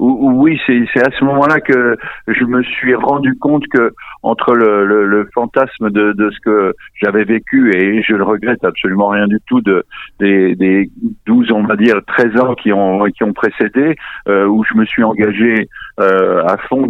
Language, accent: French, French